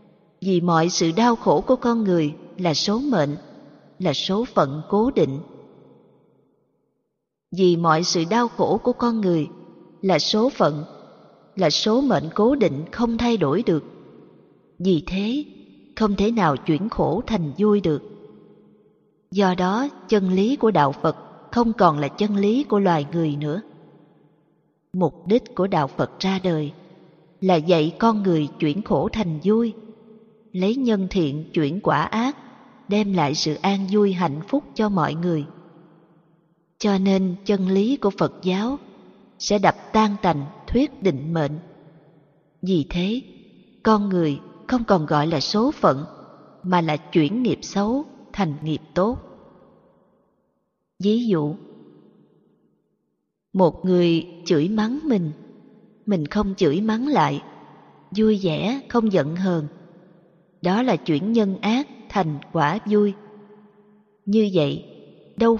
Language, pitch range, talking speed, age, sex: Vietnamese, 165-220 Hz, 140 wpm, 20-39, female